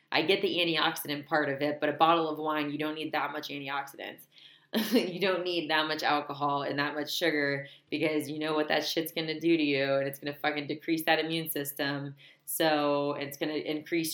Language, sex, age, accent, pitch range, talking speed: English, female, 20-39, American, 145-170 Hz, 225 wpm